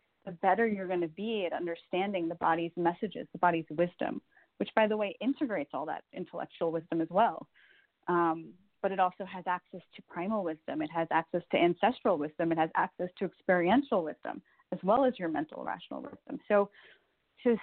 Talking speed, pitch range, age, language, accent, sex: 185 wpm, 175-225 Hz, 30-49, English, American, female